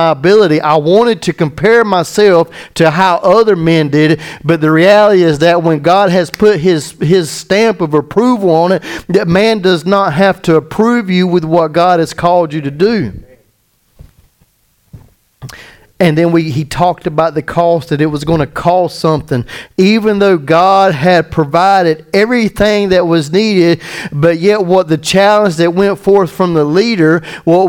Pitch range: 150-185 Hz